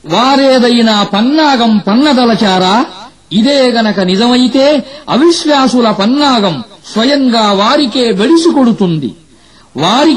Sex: male